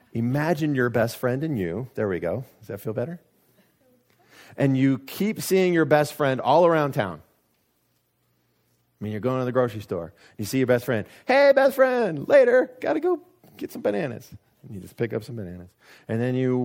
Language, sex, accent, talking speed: English, male, American, 200 wpm